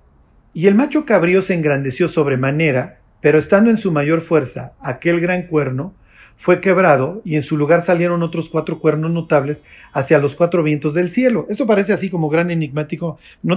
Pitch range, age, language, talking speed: 150-200 Hz, 50-69, Spanish, 175 wpm